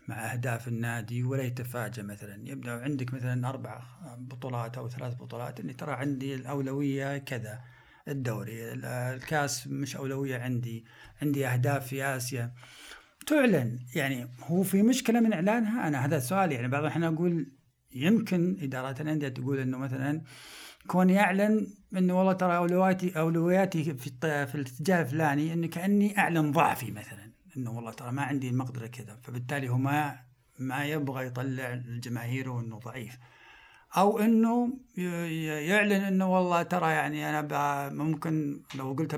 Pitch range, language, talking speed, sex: 125-175 Hz, Arabic, 140 wpm, male